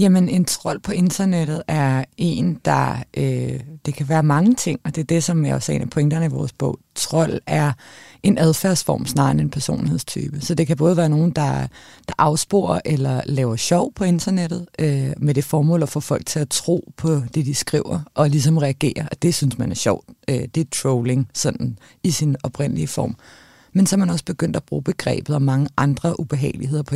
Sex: female